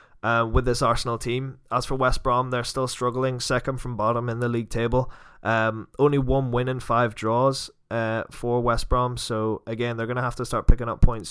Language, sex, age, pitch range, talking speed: English, male, 20-39, 115-130 Hz, 210 wpm